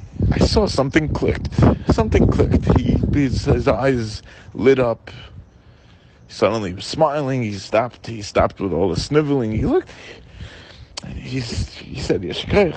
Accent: American